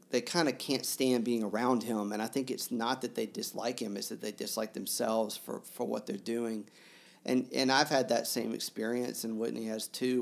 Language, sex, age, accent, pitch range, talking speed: English, male, 40-59, American, 110-125 Hz, 225 wpm